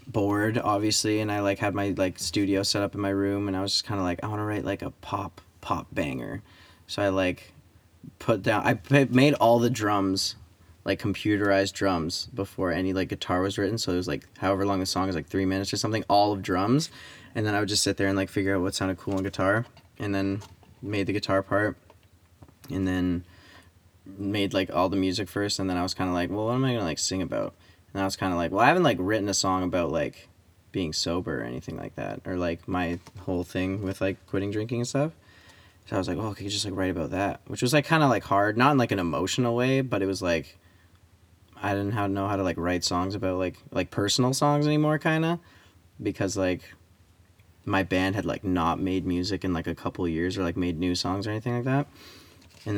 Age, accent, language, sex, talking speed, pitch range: 20-39, American, English, male, 240 wpm, 90-105 Hz